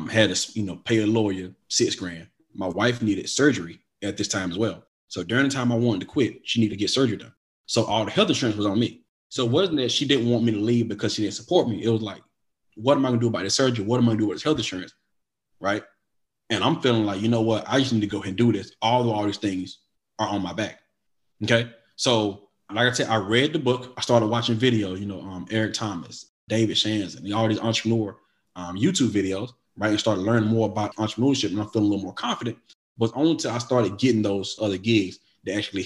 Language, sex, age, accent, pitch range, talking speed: English, male, 30-49, American, 105-120 Hz, 260 wpm